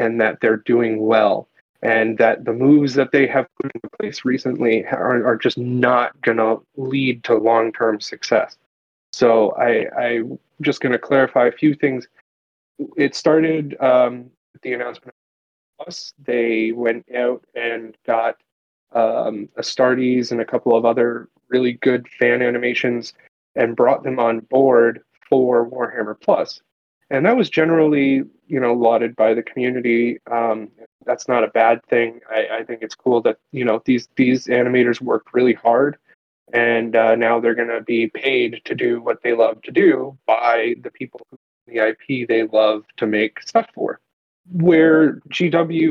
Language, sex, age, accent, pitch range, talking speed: English, male, 30-49, American, 115-135 Hz, 165 wpm